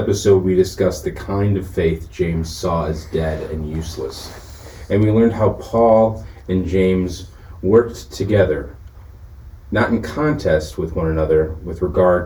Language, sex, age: English, male, 30-49